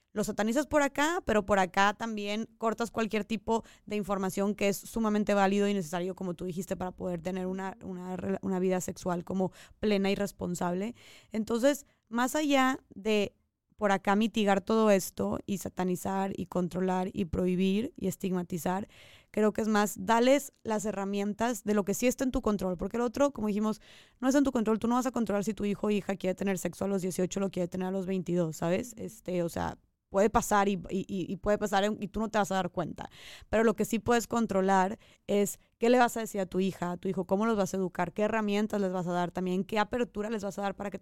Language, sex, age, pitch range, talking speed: Spanish, female, 20-39, 190-220 Hz, 225 wpm